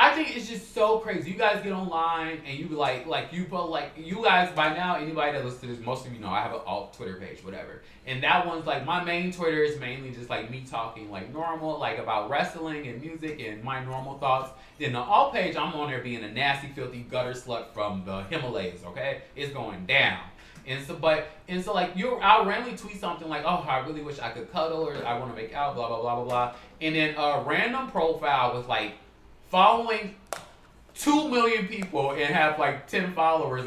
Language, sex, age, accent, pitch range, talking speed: English, male, 20-39, American, 130-190 Hz, 225 wpm